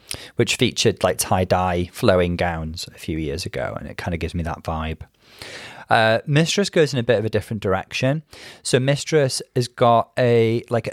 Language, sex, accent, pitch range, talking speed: English, male, British, 100-130 Hz, 190 wpm